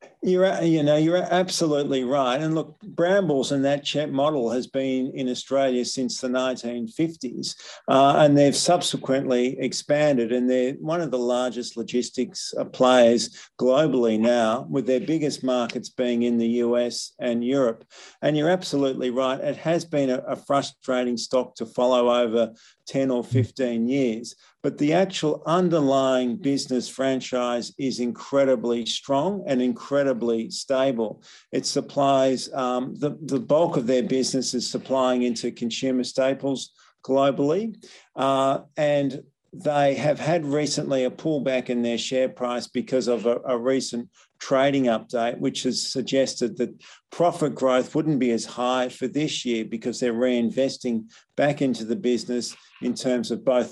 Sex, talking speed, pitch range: male, 145 wpm, 120-140 Hz